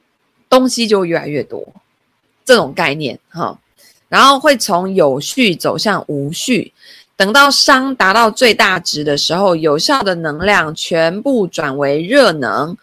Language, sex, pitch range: Chinese, female, 160-255 Hz